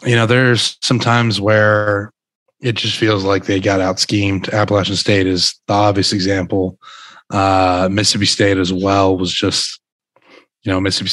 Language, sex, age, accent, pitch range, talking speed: English, male, 20-39, American, 100-110 Hz, 155 wpm